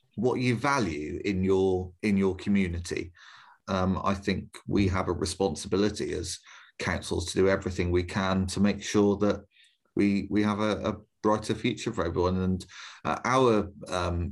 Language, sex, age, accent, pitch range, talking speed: English, male, 30-49, British, 95-110 Hz, 165 wpm